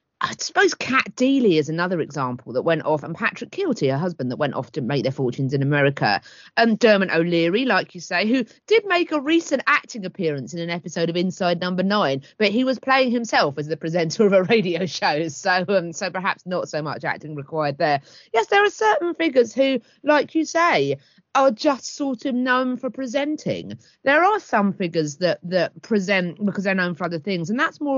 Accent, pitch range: British, 165-255 Hz